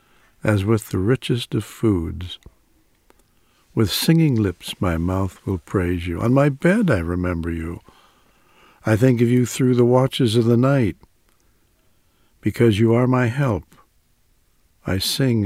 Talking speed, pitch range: 145 wpm, 90-115 Hz